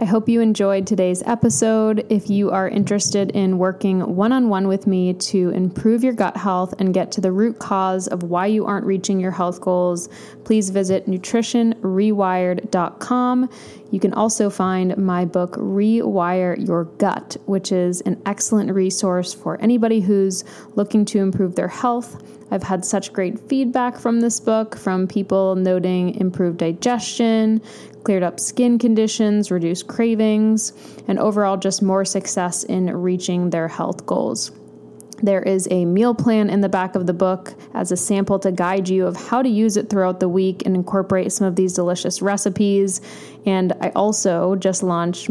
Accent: American